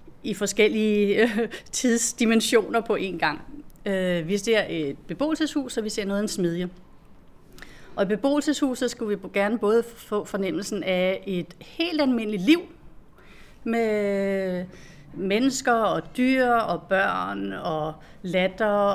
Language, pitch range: Danish, 180-220 Hz